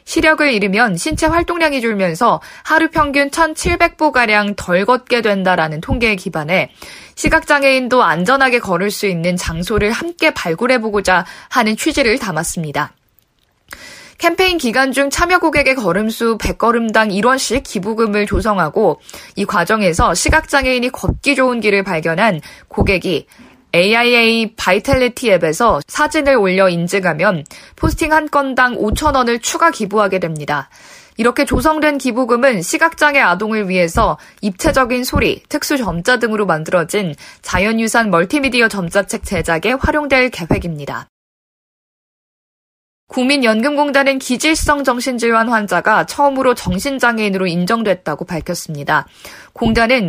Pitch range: 190-275 Hz